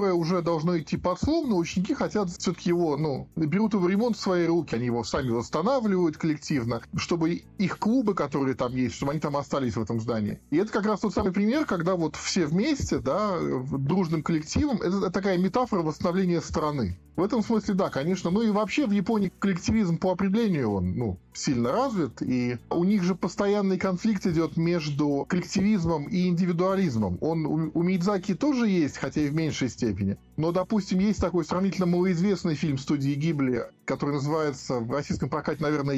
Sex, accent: male, native